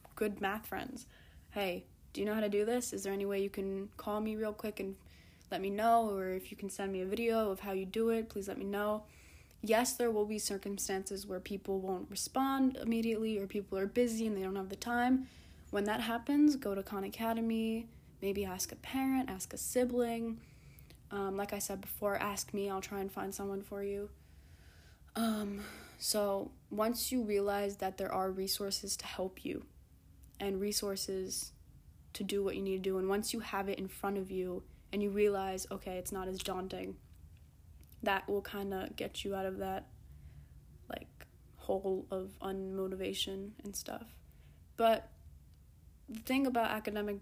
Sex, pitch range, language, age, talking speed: female, 190-210 Hz, English, 20-39, 190 wpm